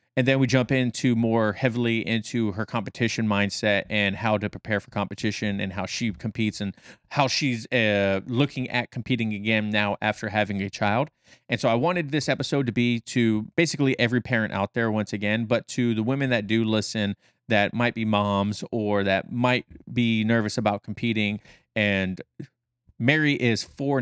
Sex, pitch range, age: male, 105-125 Hz, 30-49